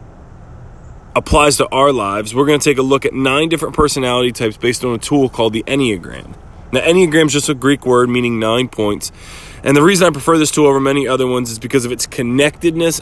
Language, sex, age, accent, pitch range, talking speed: English, male, 20-39, American, 115-145 Hz, 220 wpm